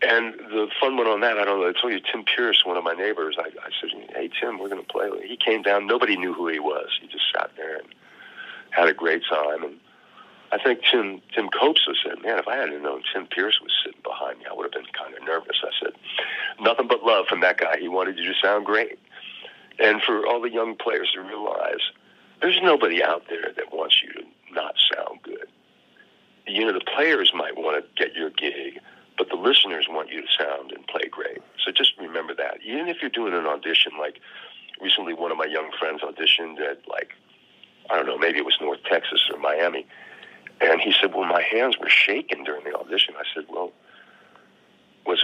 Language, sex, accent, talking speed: English, male, American, 225 wpm